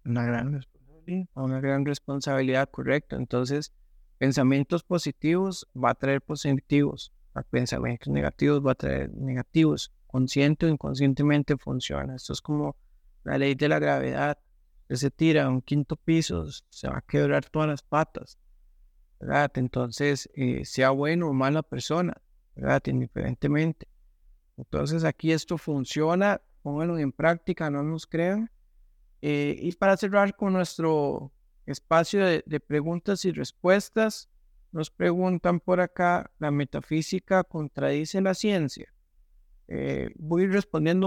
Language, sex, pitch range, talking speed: Spanish, male, 130-175 Hz, 130 wpm